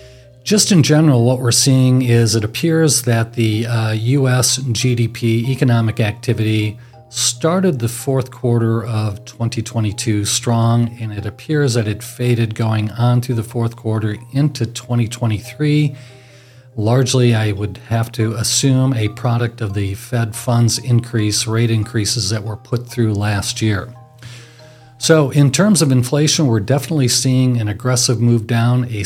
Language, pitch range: English, 110-125 Hz